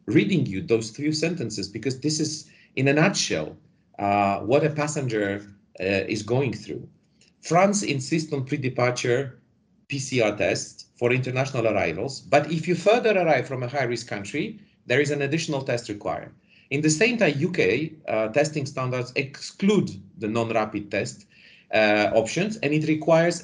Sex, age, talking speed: male, 40-59, 155 wpm